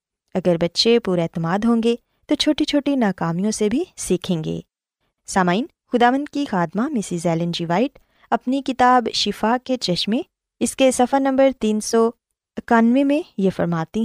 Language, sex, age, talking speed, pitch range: Urdu, female, 20-39, 150 wpm, 185-255 Hz